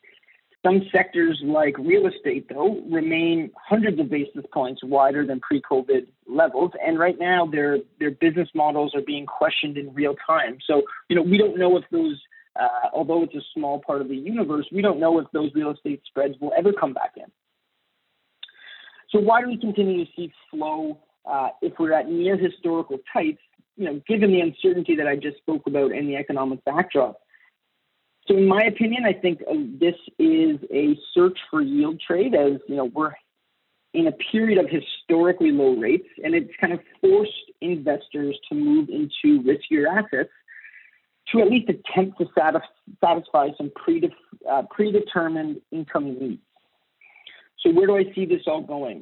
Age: 40-59